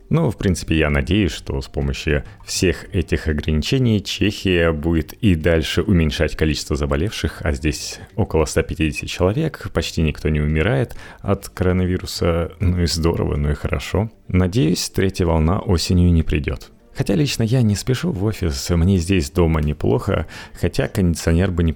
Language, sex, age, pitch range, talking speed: Russian, male, 30-49, 75-100 Hz, 155 wpm